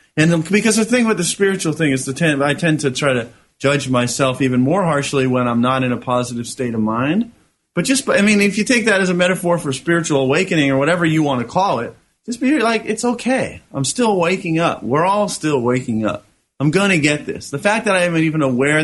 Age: 30-49